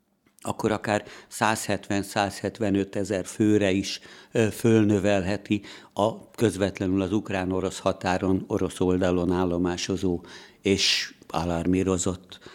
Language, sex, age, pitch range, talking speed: Hungarian, male, 60-79, 95-105 Hz, 80 wpm